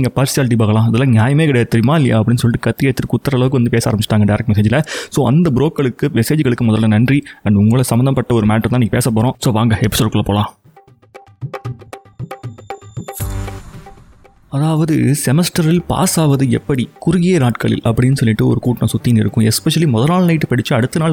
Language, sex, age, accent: Tamil, male, 30-49, native